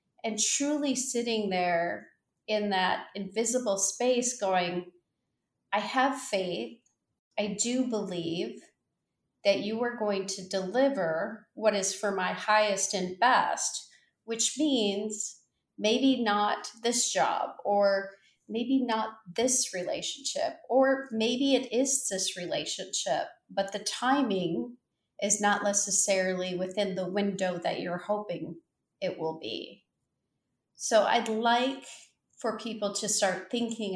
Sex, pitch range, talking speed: female, 185-240 Hz, 120 wpm